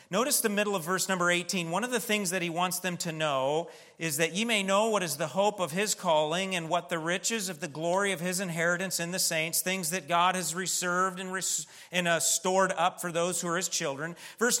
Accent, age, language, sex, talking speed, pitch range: American, 40-59, English, male, 235 wpm, 170-220 Hz